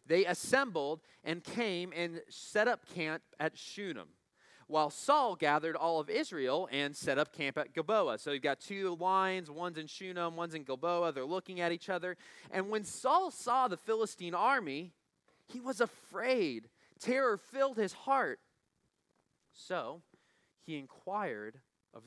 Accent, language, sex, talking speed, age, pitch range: American, English, male, 150 wpm, 30-49, 155-210 Hz